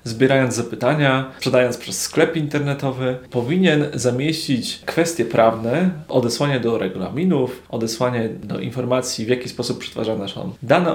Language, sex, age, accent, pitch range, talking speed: Polish, male, 30-49, native, 120-150 Hz, 120 wpm